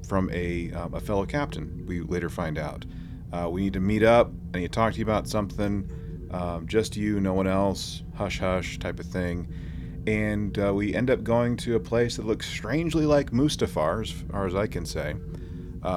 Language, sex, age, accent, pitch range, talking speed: English, male, 30-49, American, 85-105 Hz, 205 wpm